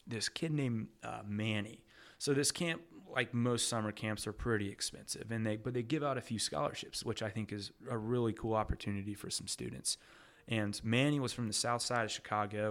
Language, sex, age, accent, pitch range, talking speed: English, male, 30-49, American, 105-120 Hz, 210 wpm